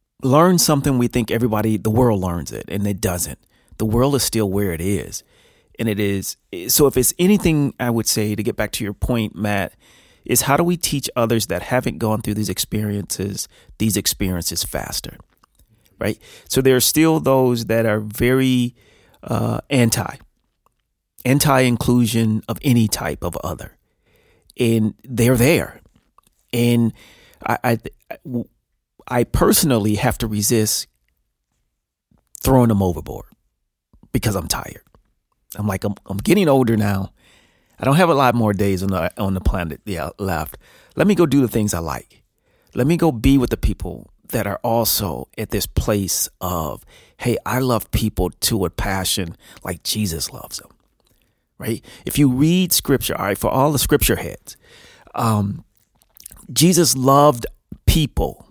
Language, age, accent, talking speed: English, 30-49, American, 160 wpm